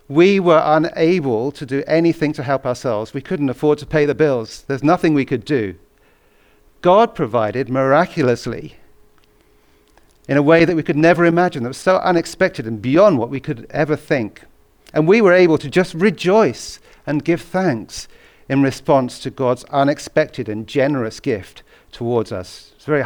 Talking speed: 170 wpm